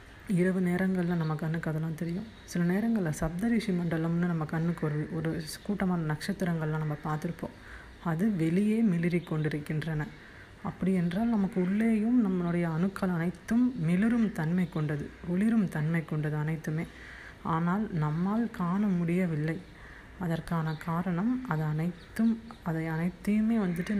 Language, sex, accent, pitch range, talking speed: Tamil, female, native, 160-190 Hz, 115 wpm